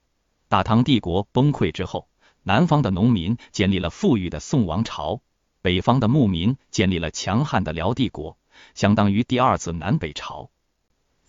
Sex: male